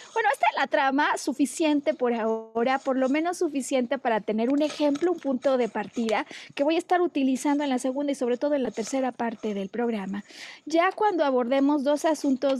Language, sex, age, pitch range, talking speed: Spanish, female, 30-49, 230-300 Hz, 200 wpm